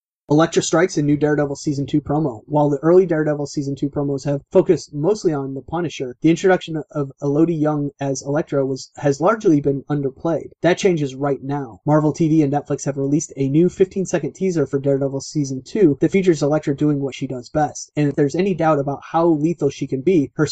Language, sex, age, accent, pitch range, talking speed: English, male, 30-49, American, 140-160 Hz, 205 wpm